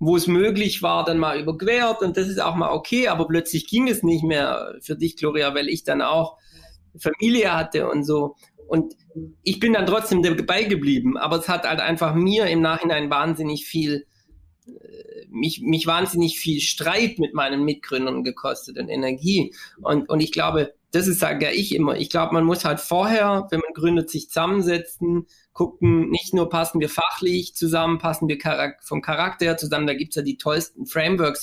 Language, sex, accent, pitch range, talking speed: German, male, German, 155-190 Hz, 185 wpm